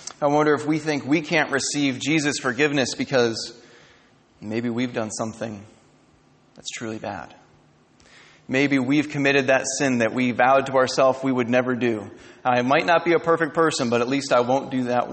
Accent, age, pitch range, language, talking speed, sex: American, 30-49, 115-135 Hz, English, 185 wpm, male